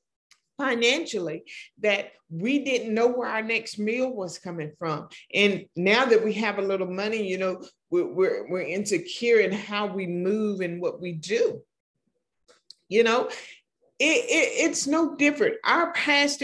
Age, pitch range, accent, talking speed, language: 50-69, 175-260 Hz, American, 155 wpm, English